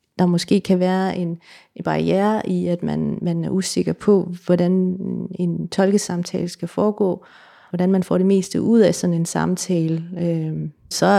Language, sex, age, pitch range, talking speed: Danish, female, 30-49, 170-190 Hz, 160 wpm